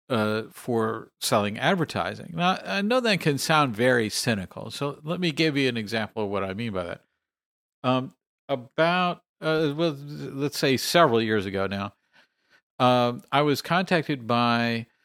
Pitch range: 110-150 Hz